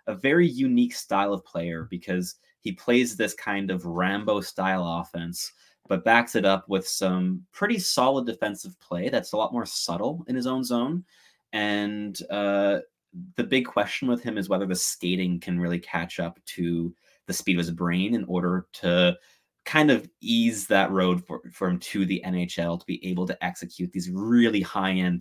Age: 20-39